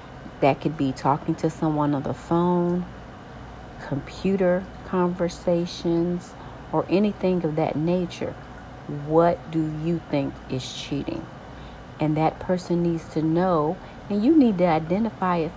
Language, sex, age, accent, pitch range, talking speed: English, female, 40-59, American, 145-190 Hz, 130 wpm